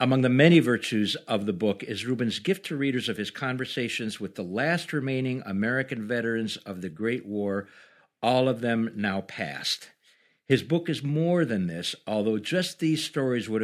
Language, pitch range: English, 105-140 Hz